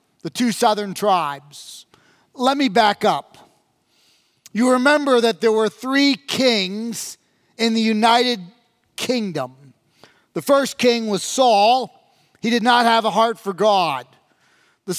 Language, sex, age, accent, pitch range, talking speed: English, male, 40-59, American, 205-250 Hz, 130 wpm